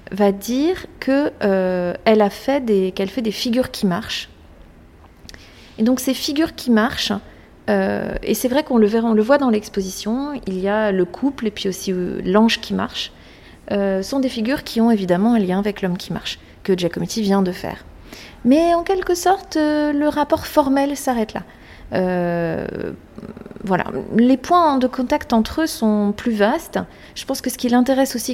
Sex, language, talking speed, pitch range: female, French, 190 wpm, 175-235 Hz